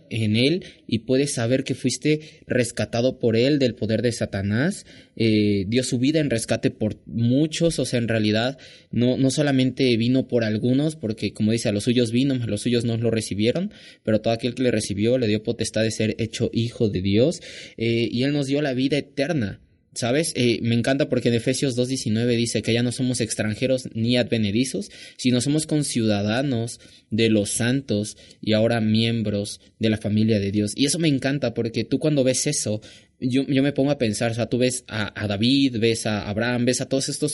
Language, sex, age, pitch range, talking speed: Spanish, male, 20-39, 110-135 Hz, 205 wpm